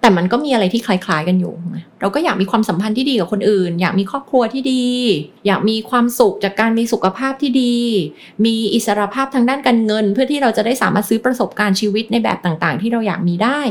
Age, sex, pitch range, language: 30-49, female, 175-235 Hz, Thai